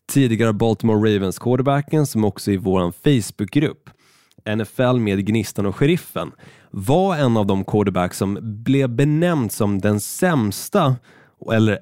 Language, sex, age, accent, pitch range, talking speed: Swedish, male, 20-39, native, 105-140 Hz, 130 wpm